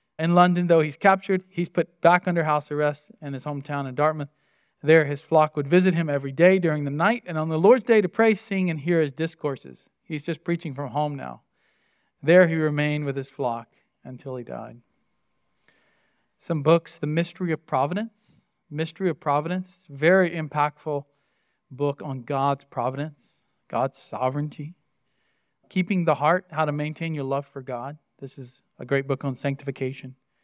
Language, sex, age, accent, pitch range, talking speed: English, male, 40-59, American, 140-170 Hz, 175 wpm